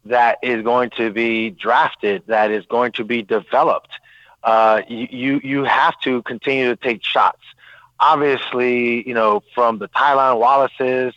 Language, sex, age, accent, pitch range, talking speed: English, male, 40-59, American, 120-140 Hz, 150 wpm